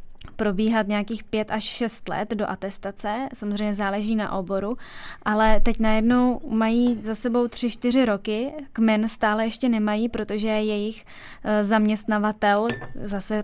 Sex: female